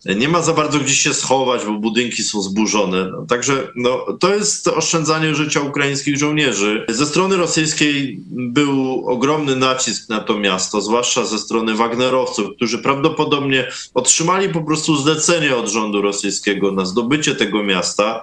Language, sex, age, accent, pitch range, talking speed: Polish, male, 20-39, native, 120-155 Hz, 150 wpm